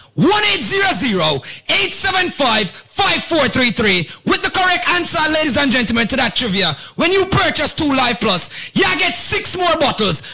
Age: 30-49